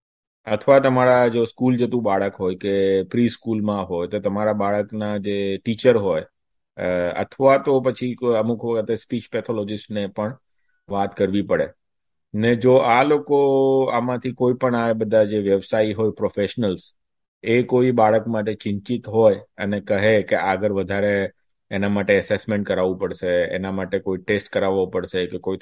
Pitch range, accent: 100-120 Hz, native